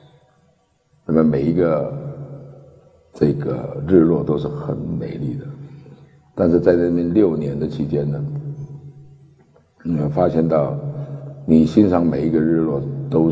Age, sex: 60-79, male